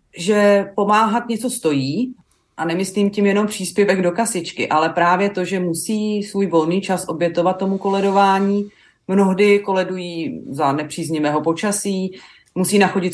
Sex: female